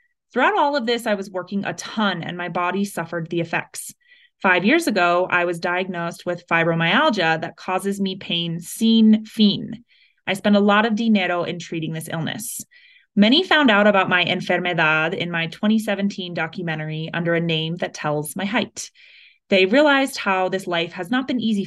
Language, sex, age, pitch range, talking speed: Spanish, female, 20-39, 175-230 Hz, 180 wpm